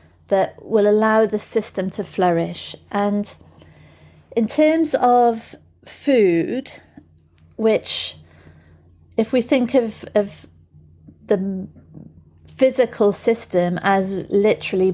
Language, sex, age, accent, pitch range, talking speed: English, female, 30-49, British, 180-220 Hz, 90 wpm